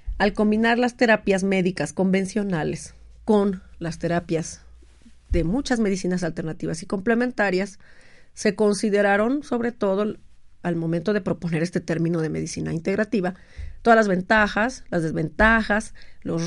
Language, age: Spanish, 40-59